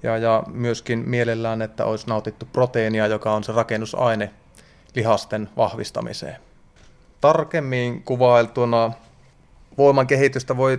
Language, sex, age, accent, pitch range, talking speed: Finnish, male, 30-49, native, 110-130 Hz, 100 wpm